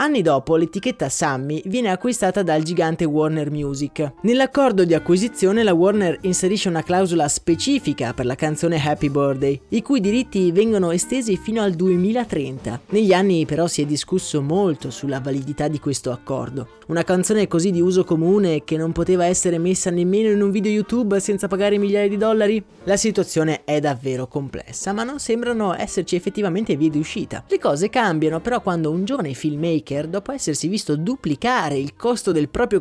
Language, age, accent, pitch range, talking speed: Italian, 20-39, native, 155-205 Hz, 170 wpm